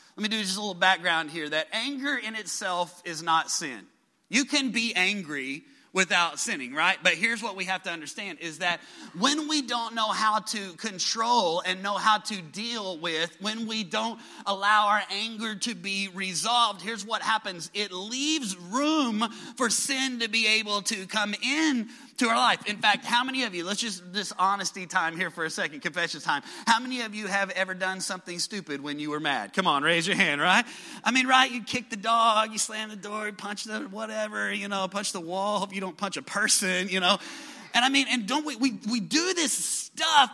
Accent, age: American, 30-49